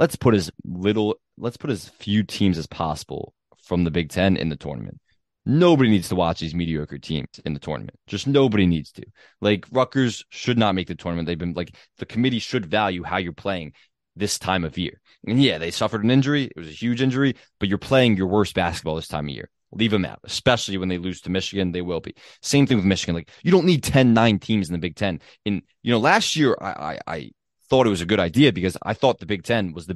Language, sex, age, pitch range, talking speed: English, male, 20-39, 90-120 Hz, 245 wpm